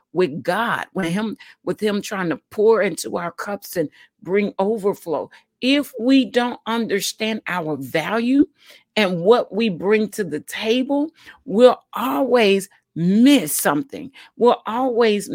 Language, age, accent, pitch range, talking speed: English, 50-69, American, 195-245 Hz, 135 wpm